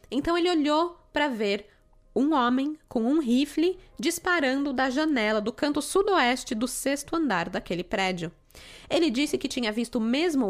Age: 20-39